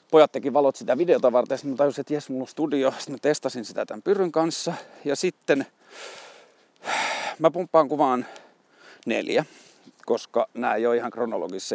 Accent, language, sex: native, Finnish, male